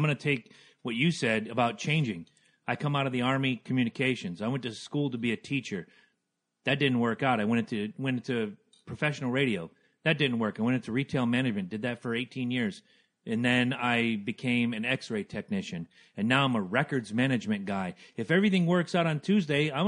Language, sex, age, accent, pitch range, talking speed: English, male, 40-59, American, 125-175 Hz, 205 wpm